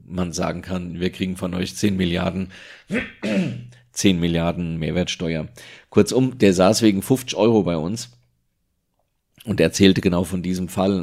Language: German